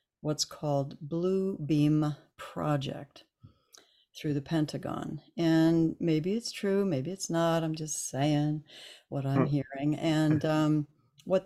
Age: 60-79